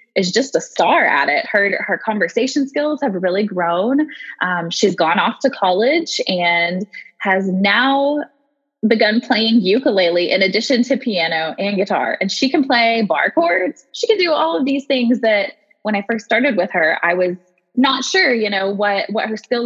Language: English